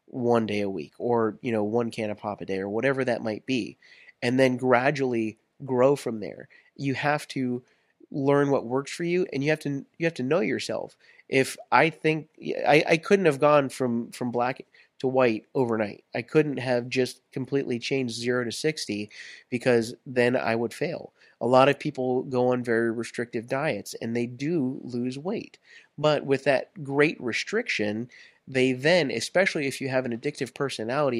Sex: male